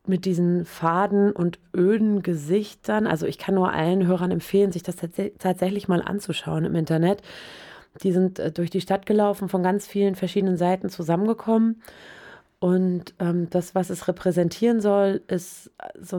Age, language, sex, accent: 30-49, German, female, German